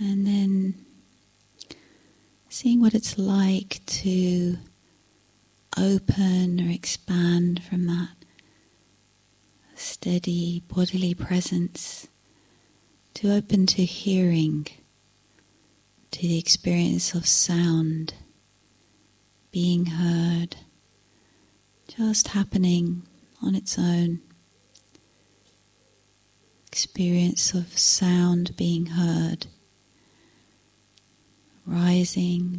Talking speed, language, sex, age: 70 wpm, English, female, 40-59